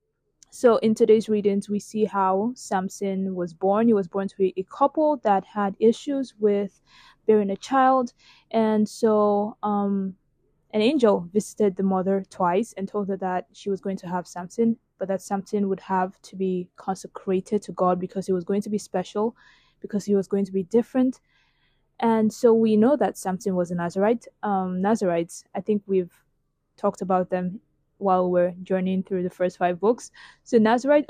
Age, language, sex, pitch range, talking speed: 20-39, English, female, 190-220 Hz, 180 wpm